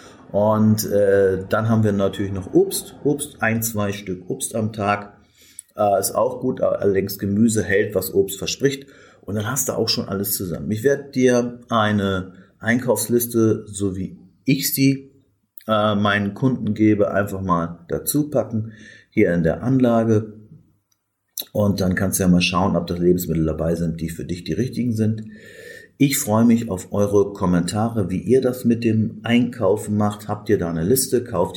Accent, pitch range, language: German, 90-115 Hz, German